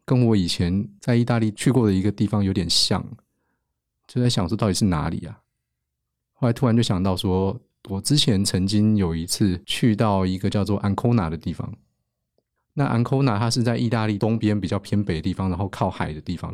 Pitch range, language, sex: 95-115 Hz, Chinese, male